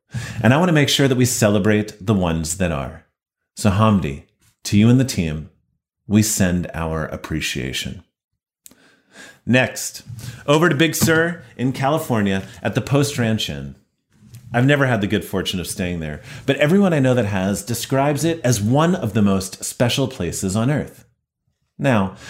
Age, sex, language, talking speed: 30-49, male, English, 170 wpm